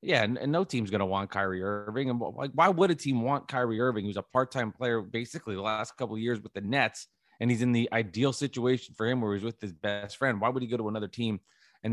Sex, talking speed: male, 265 wpm